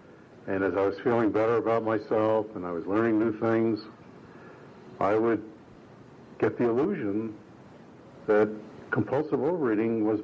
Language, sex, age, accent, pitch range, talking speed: English, male, 70-89, American, 100-120 Hz, 135 wpm